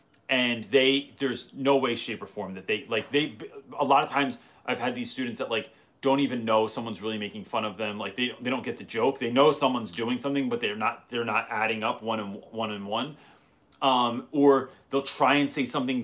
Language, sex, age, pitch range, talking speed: English, male, 30-49, 110-145 Hz, 230 wpm